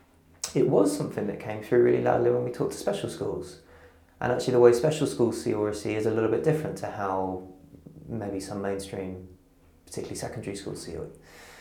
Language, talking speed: English, 195 wpm